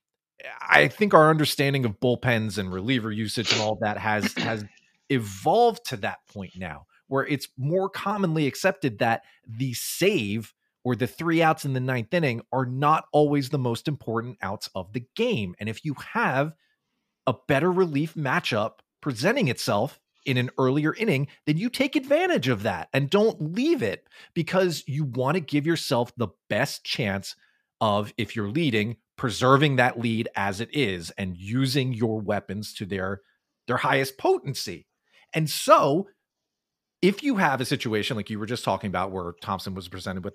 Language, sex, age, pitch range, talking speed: English, male, 30-49, 105-155 Hz, 170 wpm